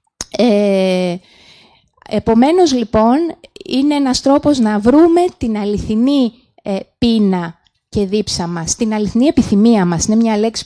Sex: female